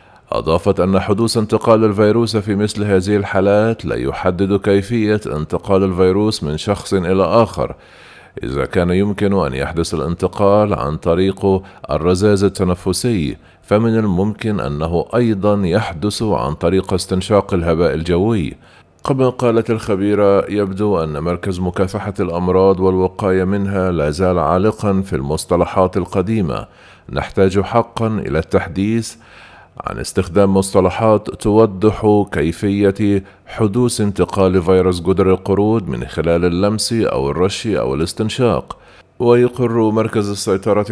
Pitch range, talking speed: 90-105 Hz, 115 wpm